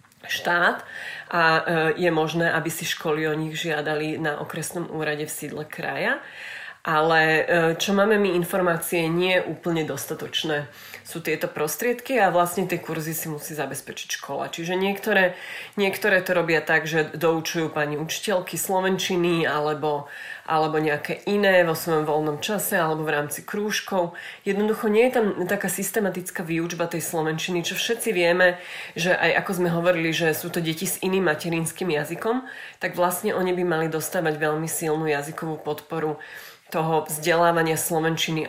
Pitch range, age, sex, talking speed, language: 155-180 Hz, 30-49, female, 150 wpm, Slovak